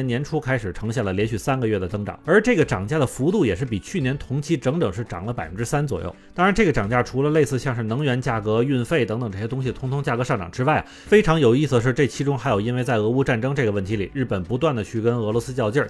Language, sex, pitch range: Chinese, male, 110-145 Hz